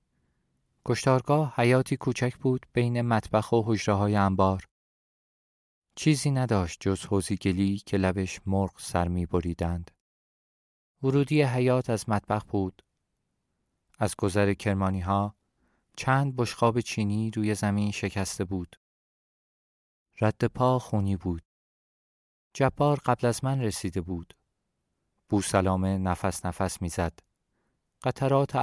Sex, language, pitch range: male, Persian, 95-130 Hz